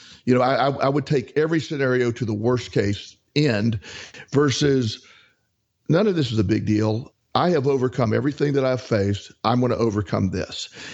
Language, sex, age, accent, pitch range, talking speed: English, male, 50-69, American, 110-140 Hz, 175 wpm